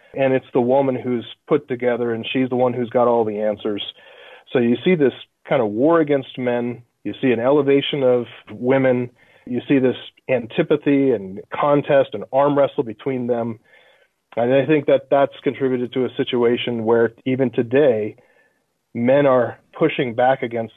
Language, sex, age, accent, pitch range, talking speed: English, male, 40-59, American, 120-140 Hz, 170 wpm